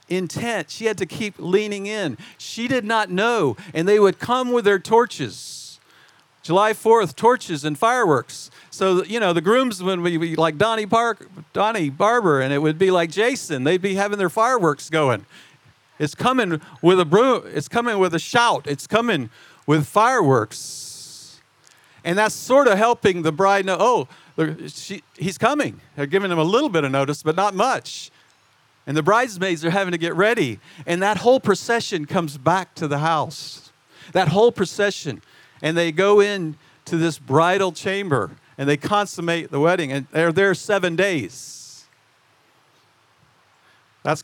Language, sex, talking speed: English, male, 165 wpm